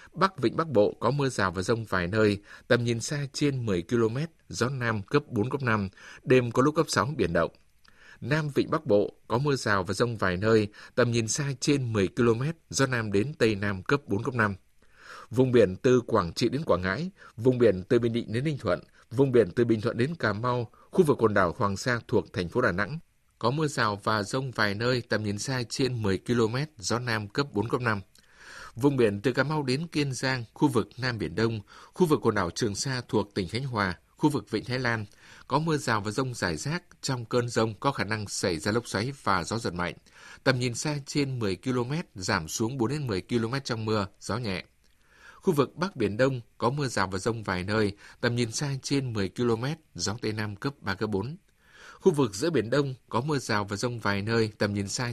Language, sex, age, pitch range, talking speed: Vietnamese, male, 60-79, 105-135 Hz, 230 wpm